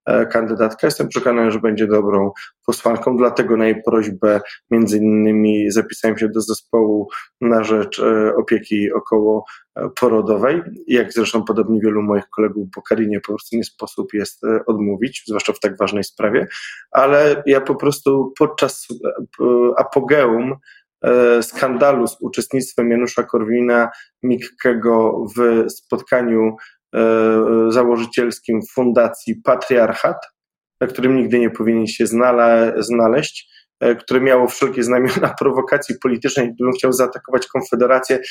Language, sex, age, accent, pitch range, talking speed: Polish, male, 20-39, native, 110-130 Hz, 115 wpm